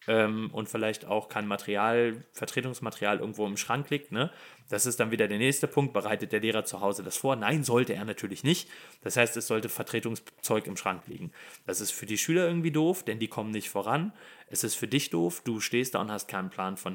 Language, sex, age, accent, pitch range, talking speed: German, male, 30-49, German, 105-130 Hz, 225 wpm